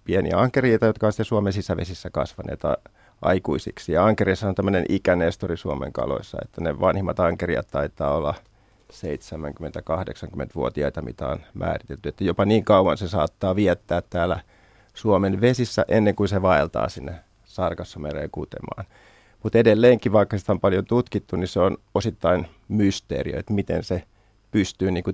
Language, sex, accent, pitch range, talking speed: Finnish, male, native, 95-105 Hz, 135 wpm